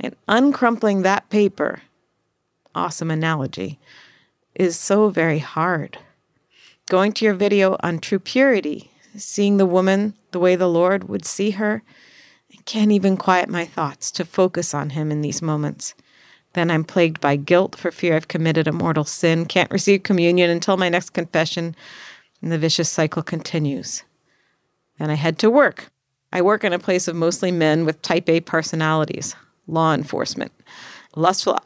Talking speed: 155 wpm